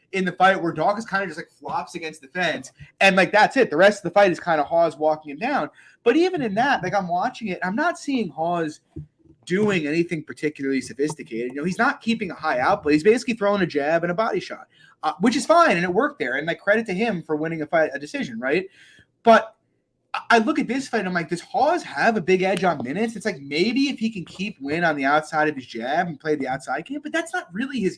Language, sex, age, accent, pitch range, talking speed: English, male, 30-49, American, 155-230 Hz, 265 wpm